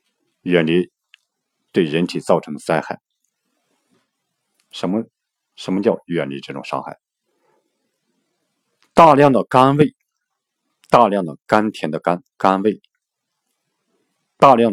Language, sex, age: Chinese, male, 50-69